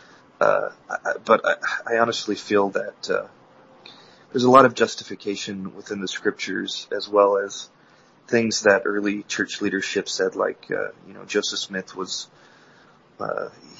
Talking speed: 150 wpm